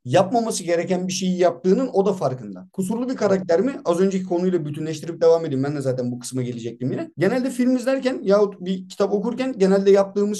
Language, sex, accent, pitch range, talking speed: Turkish, male, native, 150-200 Hz, 195 wpm